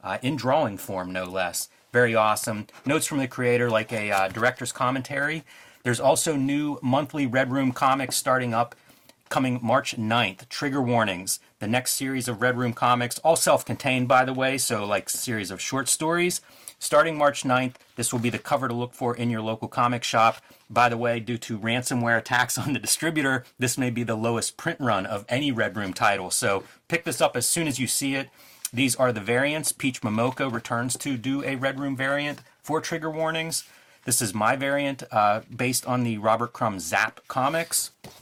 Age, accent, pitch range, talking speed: 30-49, American, 115-135 Hz, 195 wpm